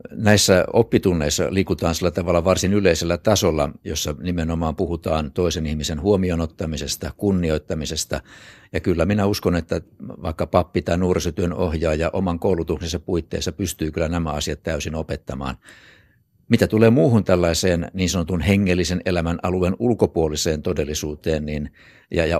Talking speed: 125 wpm